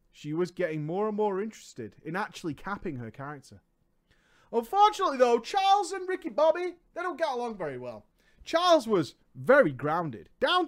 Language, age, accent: English, 30-49, British